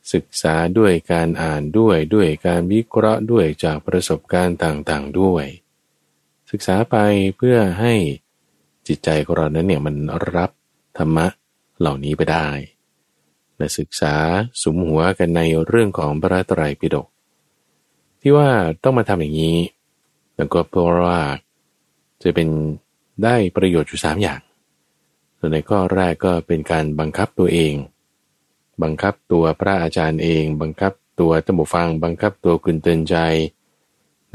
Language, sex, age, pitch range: Thai, male, 20-39, 80-100 Hz